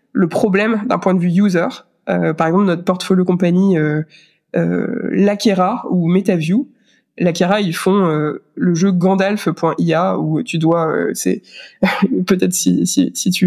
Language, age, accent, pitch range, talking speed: French, 20-39, French, 170-205 Hz, 155 wpm